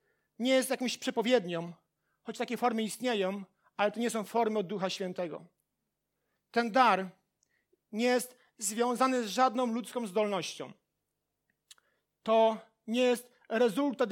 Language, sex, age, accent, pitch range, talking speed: Polish, male, 40-59, native, 210-245 Hz, 125 wpm